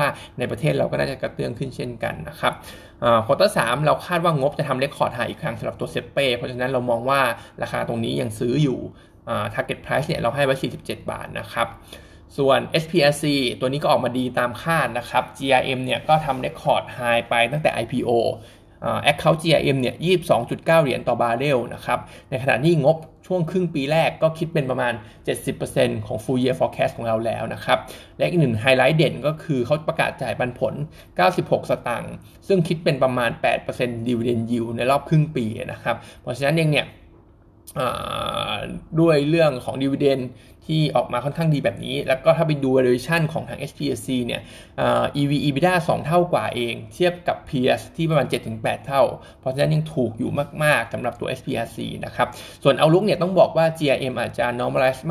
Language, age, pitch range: Thai, 20-39, 120-160 Hz